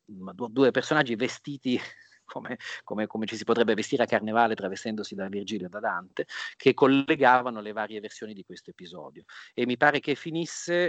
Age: 40-59